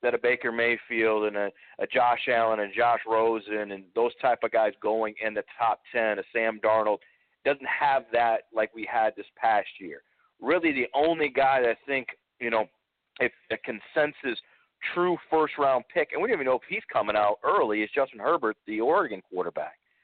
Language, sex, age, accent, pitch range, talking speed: English, male, 40-59, American, 115-170 Hz, 195 wpm